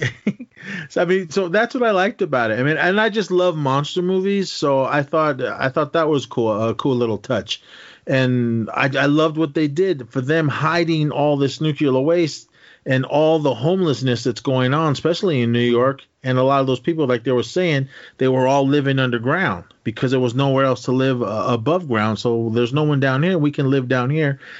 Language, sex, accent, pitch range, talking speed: English, male, American, 115-150 Hz, 220 wpm